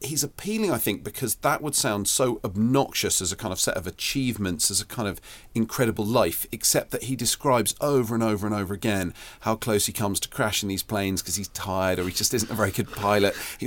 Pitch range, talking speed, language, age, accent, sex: 95-120 Hz, 235 wpm, English, 40-59, British, male